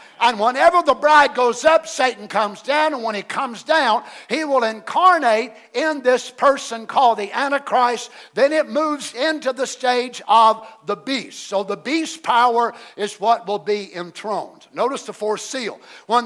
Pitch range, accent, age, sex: 220-310 Hz, American, 50-69, male